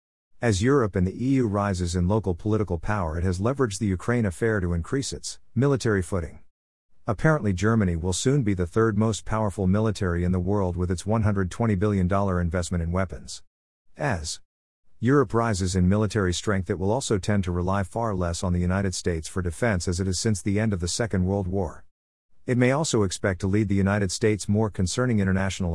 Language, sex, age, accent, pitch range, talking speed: English, male, 50-69, American, 90-110 Hz, 195 wpm